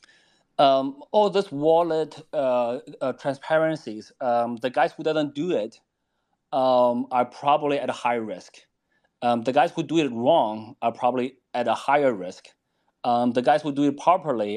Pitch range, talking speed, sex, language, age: 125-160 Hz, 175 wpm, male, English, 30-49